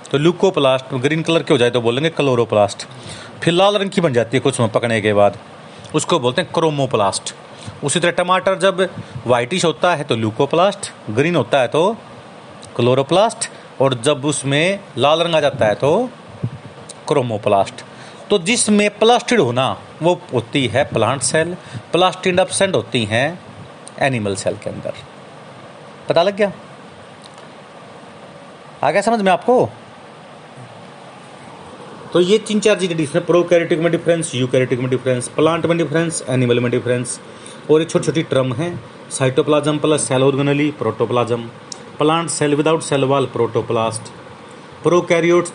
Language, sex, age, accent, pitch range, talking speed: Hindi, male, 40-59, native, 125-170 Hz, 145 wpm